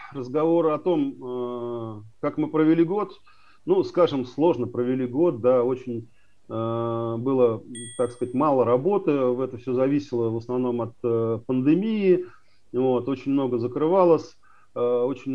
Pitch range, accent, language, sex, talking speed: 115-155 Hz, native, Russian, male, 120 wpm